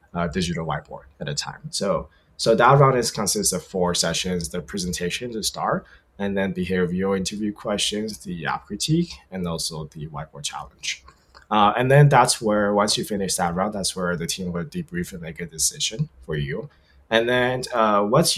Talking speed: 190 wpm